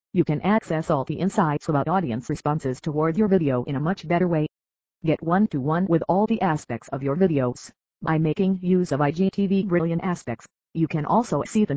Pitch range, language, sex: 140-180 Hz, English, female